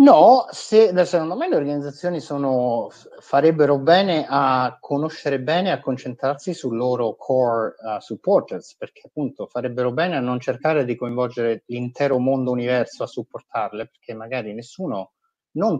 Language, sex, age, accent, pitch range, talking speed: Italian, male, 30-49, native, 120-150 Hz, 135 wpm